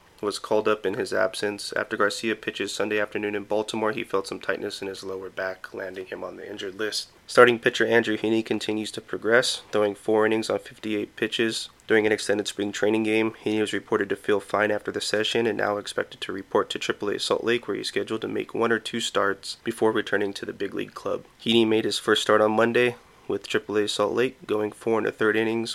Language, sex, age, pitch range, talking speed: English, male, 20-39, 105-115 Hz, 230 wpm